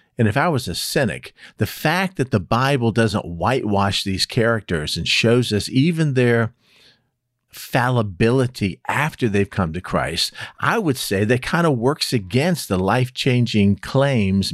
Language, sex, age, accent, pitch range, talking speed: English, male, 50-69, American, 105-135 Hz, 155 wpm